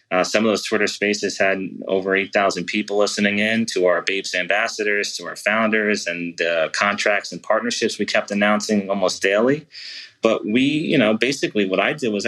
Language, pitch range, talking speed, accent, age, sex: English, 100-115 Hz, 185 wpm, American, 30-49, male